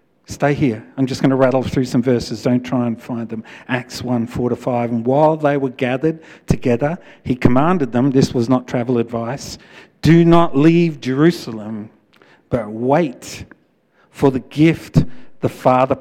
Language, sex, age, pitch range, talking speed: English, male, 50-69, 125-165 Hz, 160 wpm